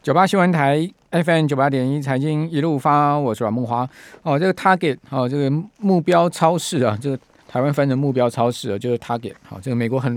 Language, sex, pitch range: Chinese, male, 125-160 Hz